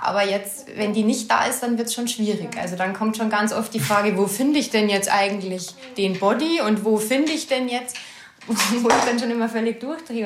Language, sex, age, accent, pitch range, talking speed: German, female, 20-39, German, 185-230 Hz, 240 wpm